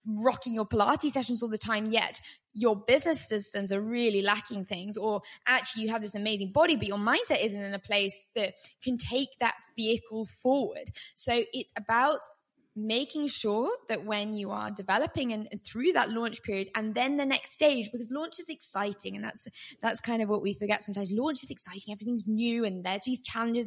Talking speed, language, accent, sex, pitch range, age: 195 wpm, English, British, female, 205-260 Hz, 20-39